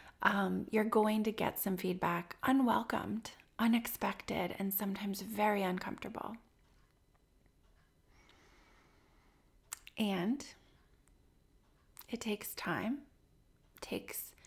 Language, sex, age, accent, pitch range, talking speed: English, female, 30-49, American, 185-220 Hz, 75 wpm